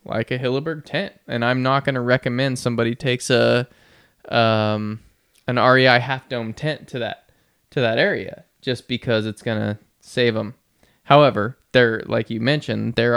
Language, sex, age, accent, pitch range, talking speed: English, male, 20-39, American, 115-140 Hz, 170 wpm